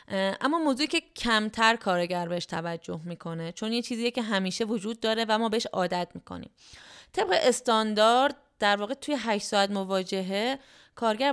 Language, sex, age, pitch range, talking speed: Persian, female, 20-39, 180-225 Hz, 155 wpm